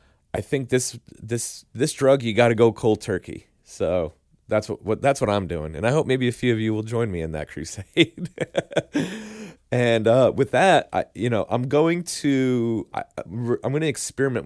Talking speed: 205 wpm